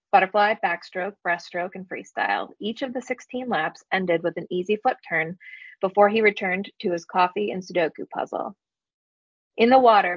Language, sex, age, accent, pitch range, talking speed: English, female, 20-39, American, 175-215 Hz, 165 wpm